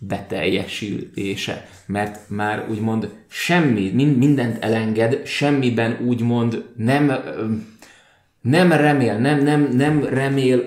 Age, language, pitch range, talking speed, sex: 20-39, Hungarian, 100-120 Hz, 85 wpm, male